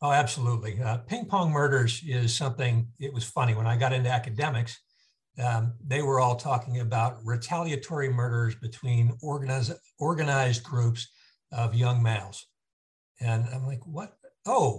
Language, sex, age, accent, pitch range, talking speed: English, male, 60-79, American, 115-140 Hz, 140 wpm